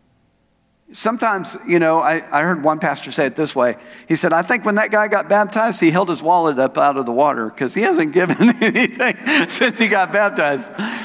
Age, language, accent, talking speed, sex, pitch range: 50-69, English, American, 210 wpm, male, 175-225 Hz